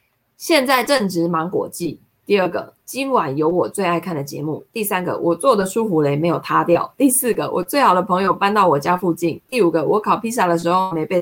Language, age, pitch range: Chinese, 20-39, 170-225 Hz